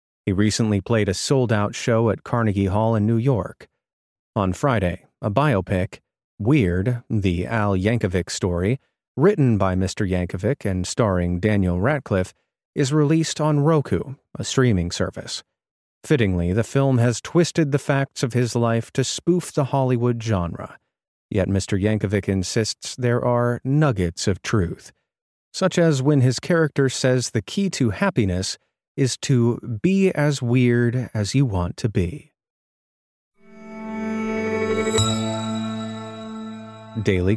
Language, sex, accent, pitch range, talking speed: English, male, American, 105-140 Hz, 130 wpm